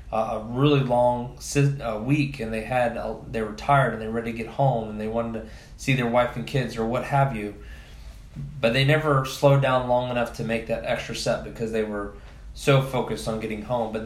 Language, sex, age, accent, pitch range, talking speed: English, male, 20-39, American, 110-130 Hz, 220 wpm